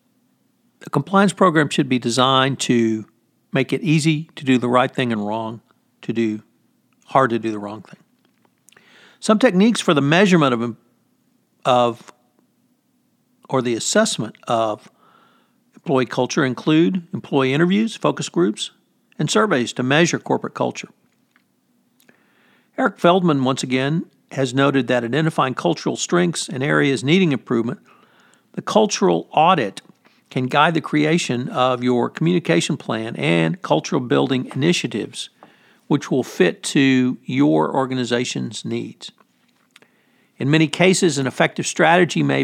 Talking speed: 130 wpm